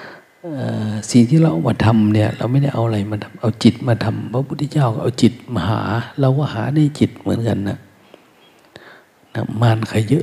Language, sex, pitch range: Thai, male, 115-150 Hz